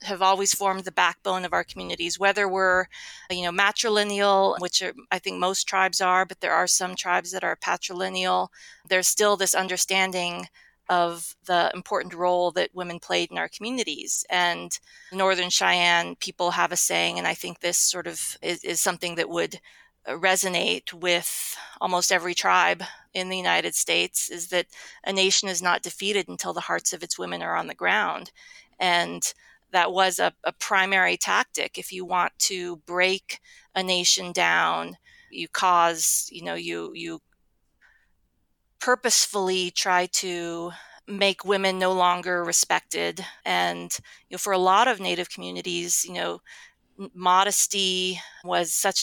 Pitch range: 175-190 Hz